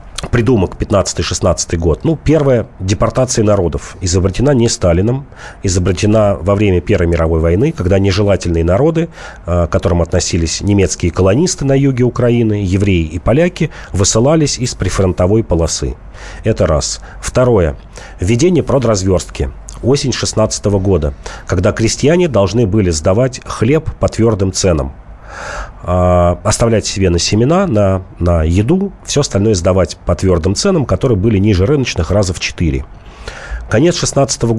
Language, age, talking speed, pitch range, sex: Russian, 40-59, 125 wpm, 90-120 Hz, male